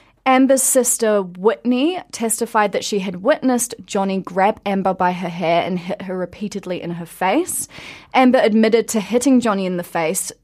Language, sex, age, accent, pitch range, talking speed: English, female, 20-39, Australian, 175-230 Hz, 165 wpm